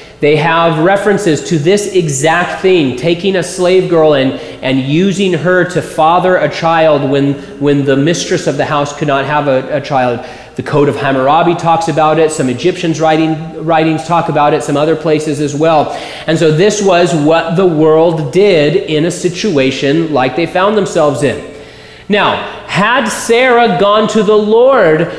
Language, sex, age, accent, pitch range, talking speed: English, male, 30-49, American, 155-205 Hz, 175 wpm